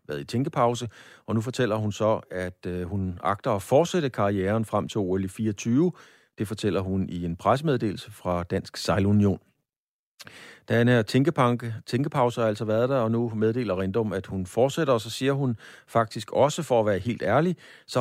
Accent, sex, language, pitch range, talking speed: native, male, Danish, 95-120 Hz, 175 wpm